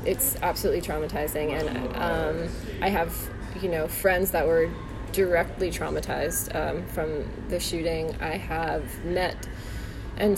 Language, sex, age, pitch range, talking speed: English, female, 20-39, 165-195 Hz, 125 wpm